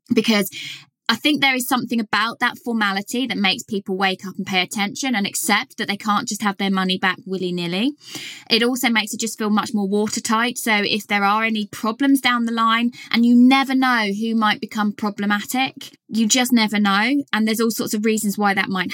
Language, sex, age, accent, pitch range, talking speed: English, female, 20-39, British, 210-265 Hz, 210 wpm